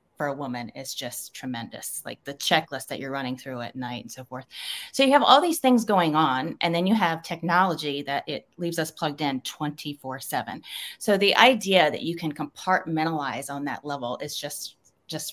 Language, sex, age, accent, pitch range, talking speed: English, female, 30-49, American, 150-205 Hz, 200 wpm